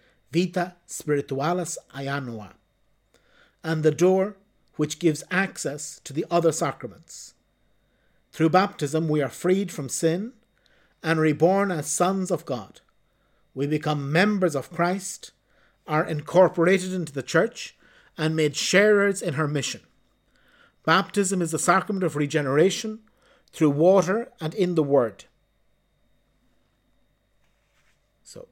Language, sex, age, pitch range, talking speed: English, male, 50-69, 130-165 Hz, 115 wpm